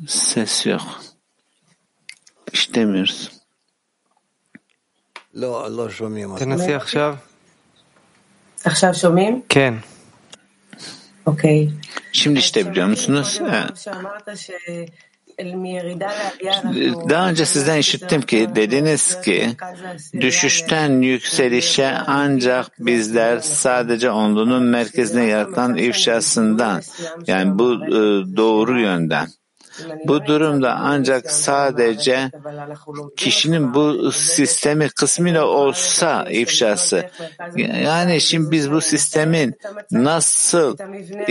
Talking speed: 70 wpm